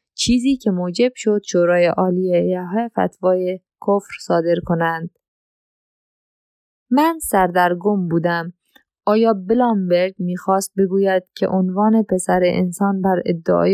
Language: Persian